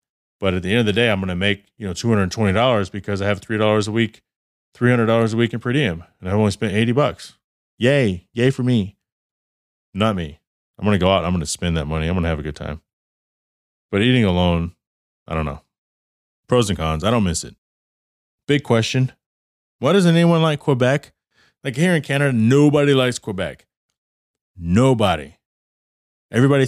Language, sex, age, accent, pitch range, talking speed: English, male, 30-49, American, 90-120 Hz, 195 wpm